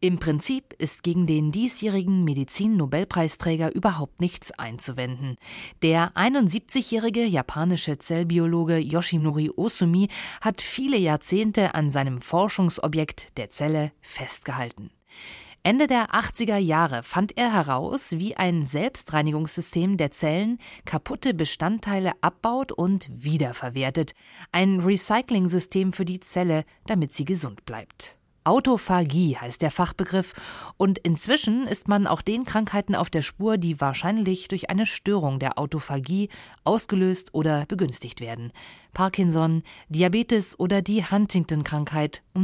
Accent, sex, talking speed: German, female, 115 wpm